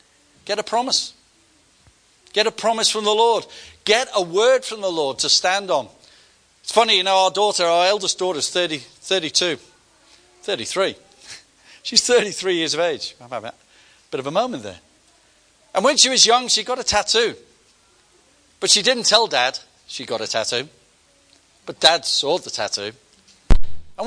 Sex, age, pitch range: male, 40-59, 170-230 Hz